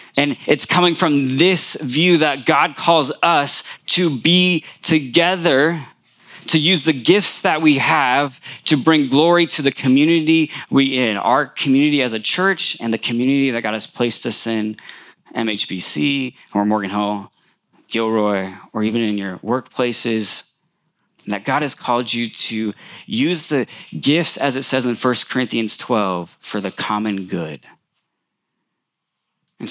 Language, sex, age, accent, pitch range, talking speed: English, male, 20-39, American, 110-160 Hz, 150 wpm